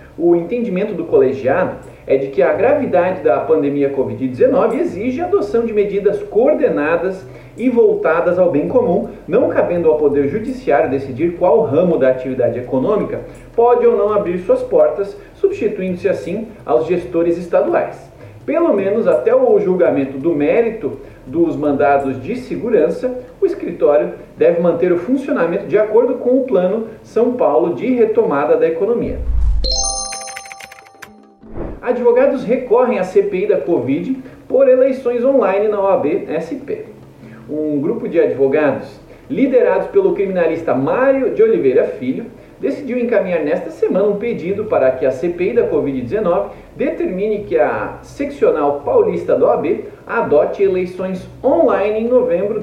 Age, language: 40-59, Portuguese